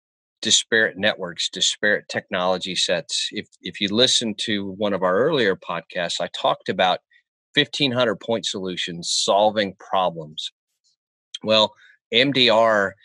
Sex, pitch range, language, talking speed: male, 95-115 Hz, English, 115 wpm